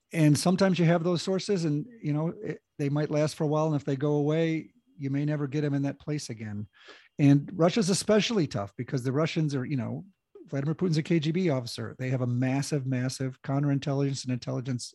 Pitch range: 125-150 Hz